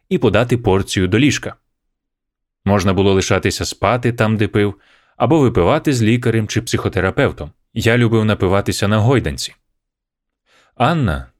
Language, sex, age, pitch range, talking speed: Ukrainian, male, 30-49, 95-125 Hz, 125 wpm